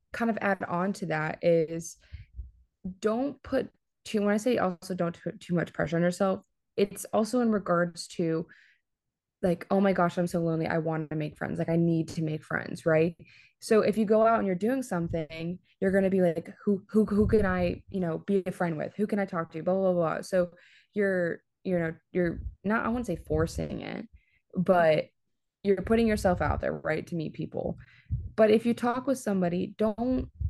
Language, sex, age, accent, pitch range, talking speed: English, female, 20-39, American, 165-195 Hz, 205 wpm